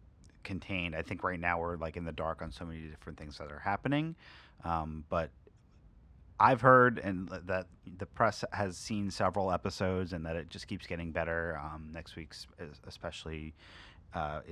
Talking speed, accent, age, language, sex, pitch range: 175 wpm, American, 30-49, English, male, 85-105 Hz